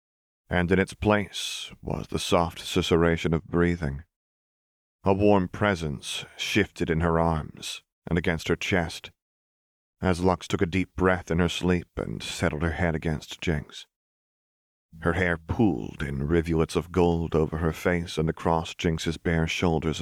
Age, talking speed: 30-49, 155 wpm